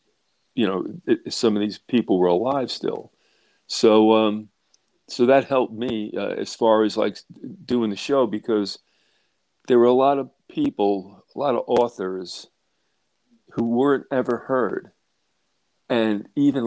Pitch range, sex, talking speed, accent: 105-135 Hz, male, 150 wpm, American